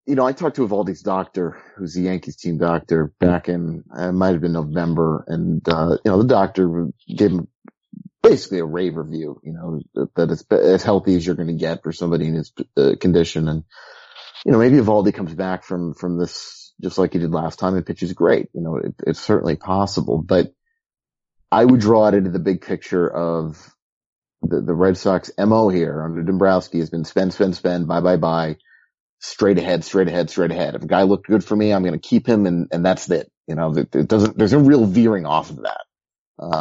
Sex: male